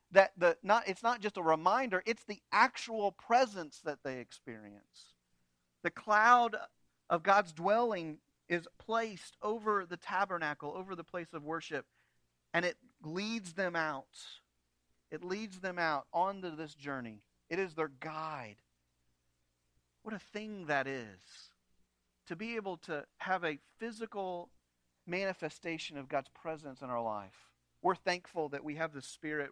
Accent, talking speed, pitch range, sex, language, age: American, 145 wpm, 125-185 Hz, male, English, 40-59